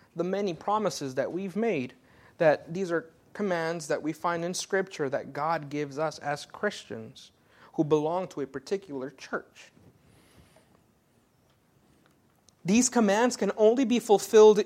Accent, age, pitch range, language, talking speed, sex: American, 30-49, 145-210 Hz, English, 135 wpm, male